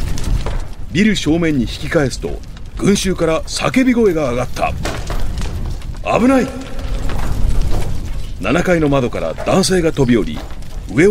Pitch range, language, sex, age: 120-195 Hz, Japanese, male, 40-59